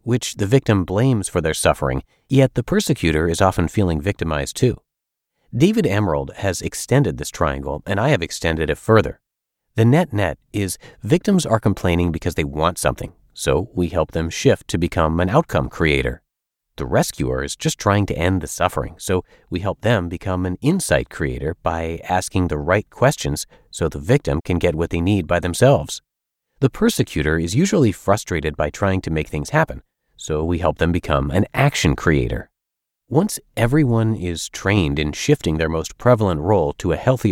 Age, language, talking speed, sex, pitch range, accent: 40-59, English, 180 wpm, male, 80-120 Hz, American